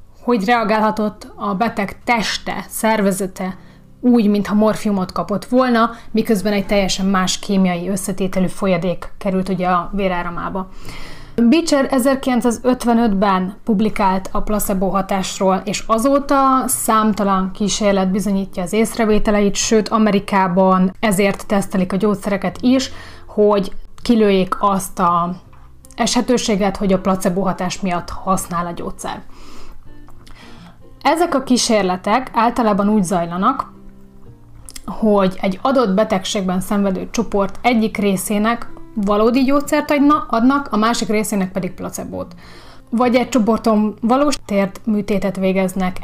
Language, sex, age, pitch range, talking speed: Hungarian, female, 30-49, 190-230 Hz, 110 wpm